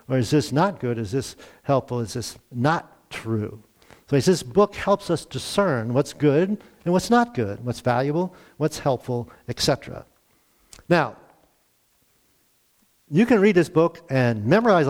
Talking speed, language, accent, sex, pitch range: 155 wpm, English, American, male, 125-170 Hz